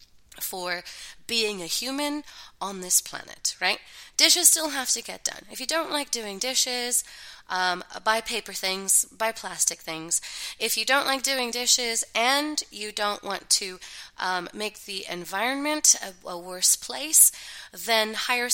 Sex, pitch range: female, 220-290 Hz